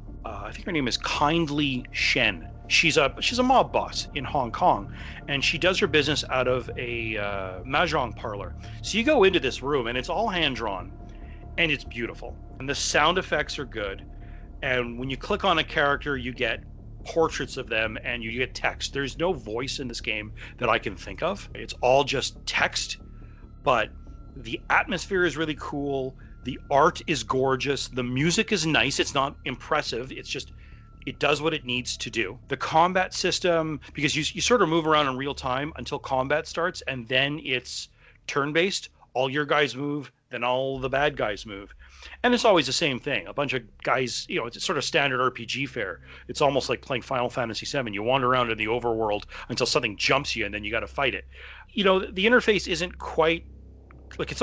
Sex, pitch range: male, 120-160 Hz